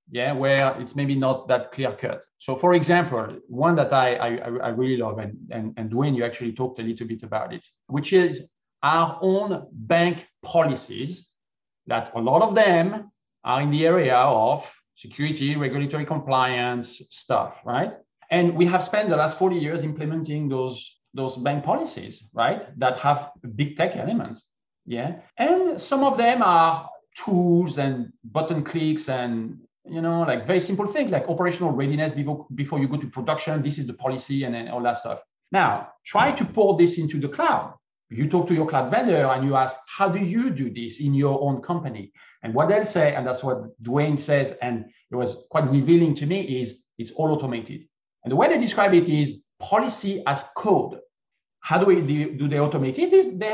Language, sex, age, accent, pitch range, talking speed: English, male, 40-59, French, 130-175 Hz, 190 wpm